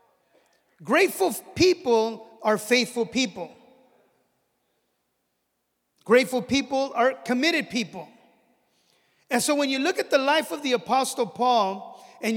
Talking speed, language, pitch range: 110 wpm, English, 225-270 Hz